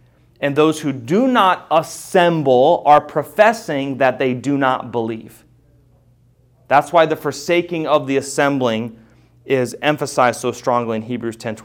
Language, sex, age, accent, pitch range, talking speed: English, male, 30-49, American, 125-185 Hz, 135 wpm